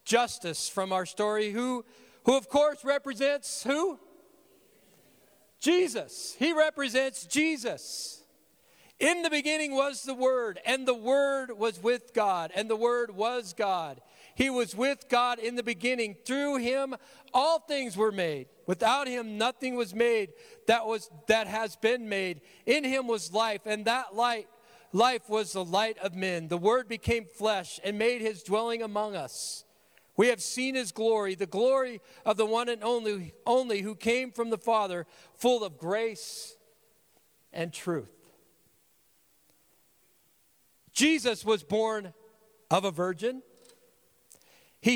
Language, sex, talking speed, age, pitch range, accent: English, male, 145 wpm, 40-59, 215-265 Hz, American